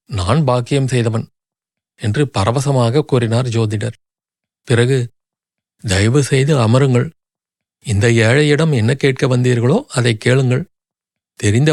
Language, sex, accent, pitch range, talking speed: Tamil, male, native, 115-145 Hz, 90 wpm